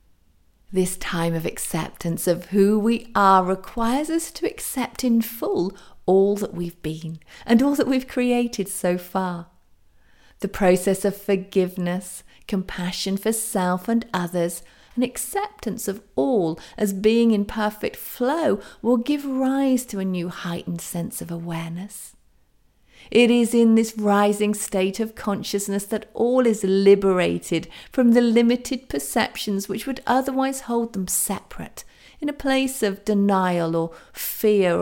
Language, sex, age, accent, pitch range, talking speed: English, female, 40-59, British, 180-235 Hz, 140 wpm